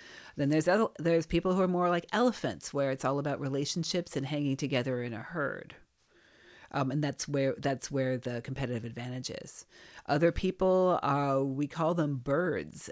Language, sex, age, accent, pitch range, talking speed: English, female, 40-59, American, 140-175 Hz, 170 wpm